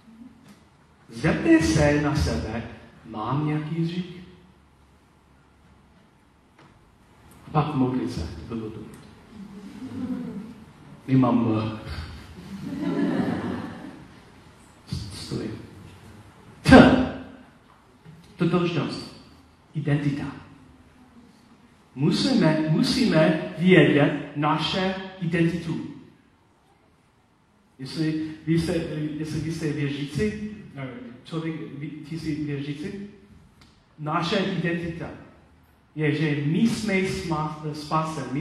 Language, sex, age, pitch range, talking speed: Czech, male, 40-59, 110-170 Hz, 55 wpm